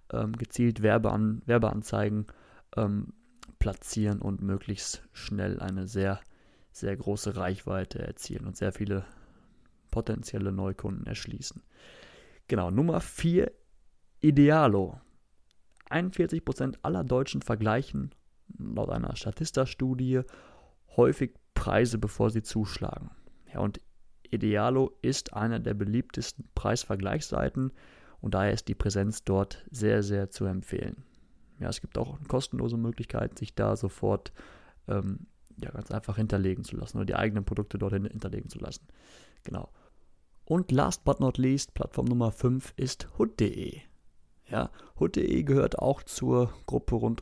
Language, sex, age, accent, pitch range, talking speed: German, male, 30-49, German, 100-125 Hz, 115 wpm